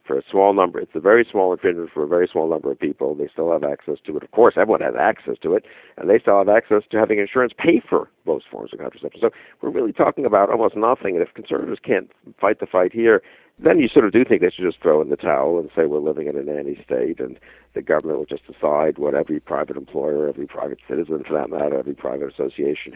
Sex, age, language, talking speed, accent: male, 60-79, English, 255 wpm, American